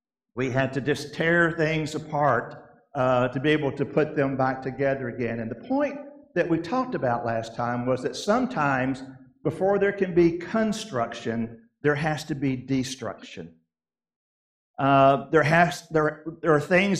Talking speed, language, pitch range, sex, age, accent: 155 wpm, English, 135-180 Hz, male, 50-69, American